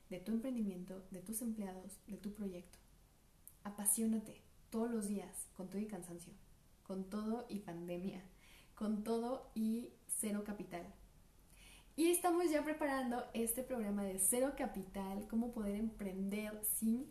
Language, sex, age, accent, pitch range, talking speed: Spanish, female, 20-39, Mexican, 200-255 Hz, 135 wpm